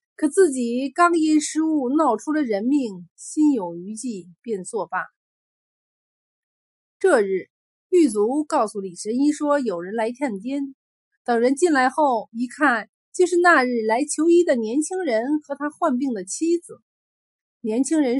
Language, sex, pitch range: Chinese, female, 225-305 Hz